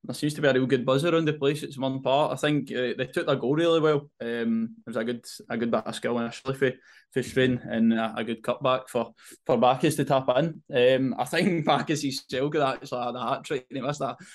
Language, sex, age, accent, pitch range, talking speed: English, male, 20-39, British, 115-145 Hz, 260 wpm